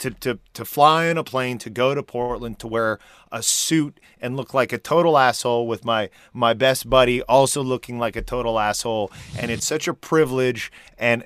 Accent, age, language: American, 30-49, English